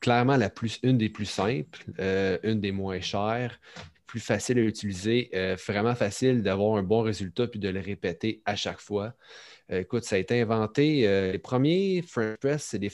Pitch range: 100-120 Hz